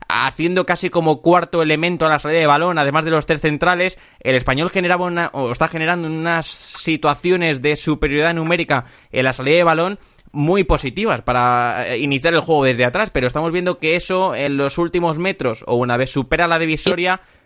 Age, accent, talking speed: 20-39, Spanish, 190 wpm